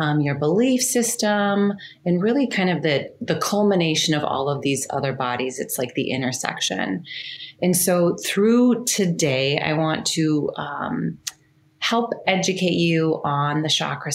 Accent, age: American, 30-49